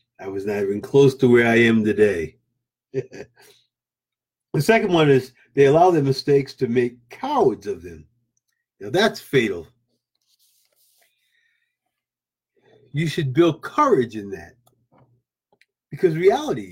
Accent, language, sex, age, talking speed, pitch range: American, English, male, 50-69, 120 wpm, 115-140 Hz